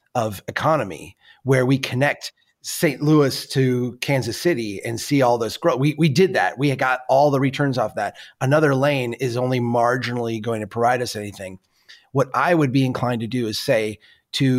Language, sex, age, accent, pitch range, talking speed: English, male, 30-49, American, 120-160 Hz, 190 wpm